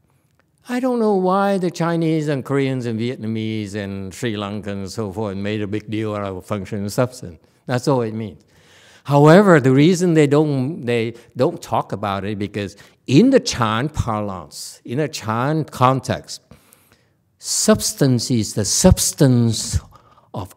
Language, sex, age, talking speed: English, male, 60-79, 155 wpm